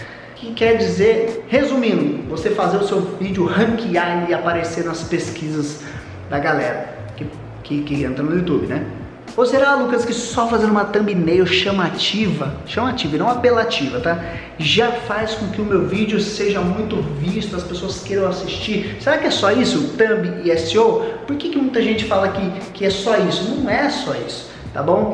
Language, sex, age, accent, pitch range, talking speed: Portuguese, male, 20-39, Brazilian, 175-230 Hz, 180 wpm